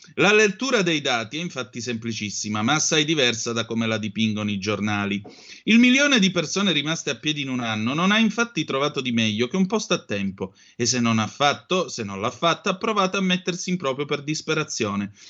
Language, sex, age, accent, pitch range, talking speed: Italian, male, 30-49, native, 115-170 Hz, 210 wpm